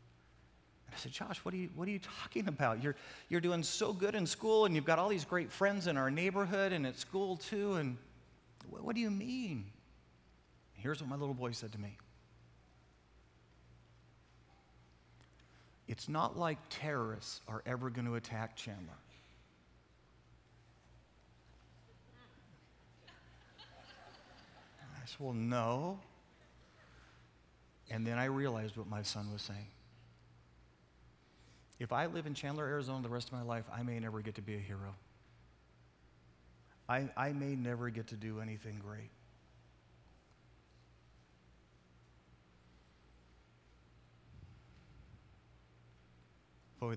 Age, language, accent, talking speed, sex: 40-59, English, American, 125 wpm, male